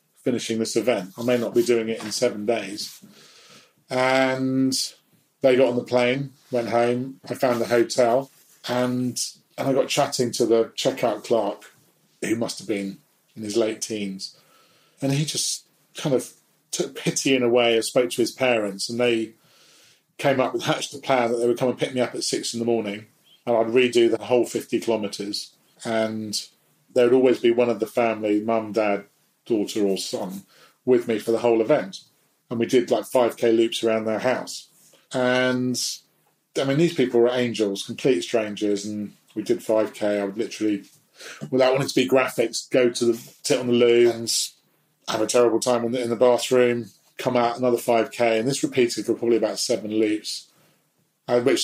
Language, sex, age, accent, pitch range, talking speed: English, male, 40-59, British, 110-125 Hz, 190 wpm